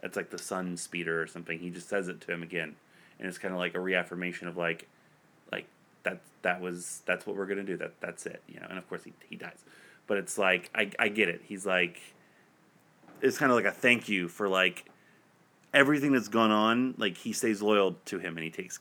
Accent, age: American, 30-49